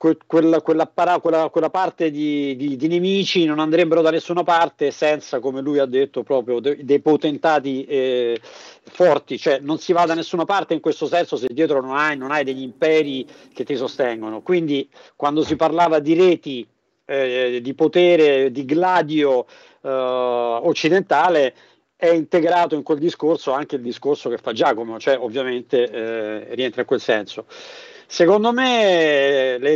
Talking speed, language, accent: 155 wpm, Italian, native